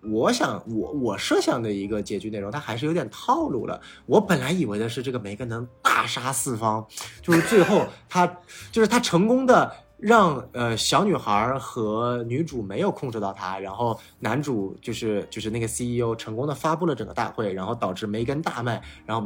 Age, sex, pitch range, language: 20-39, male, 110-160 Hz, Chinese